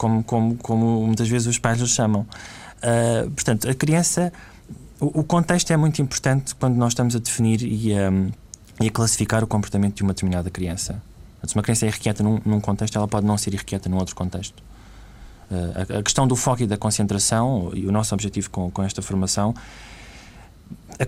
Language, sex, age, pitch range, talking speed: Portuguese, male, 20-39, 100-120 Hz, 200 wpm